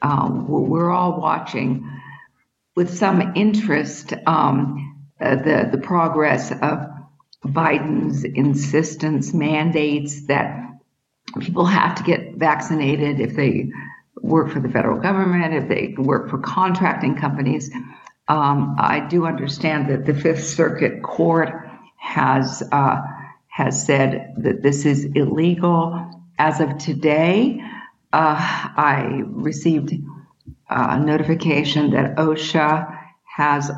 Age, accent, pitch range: 60-79, American, 145-170 Hz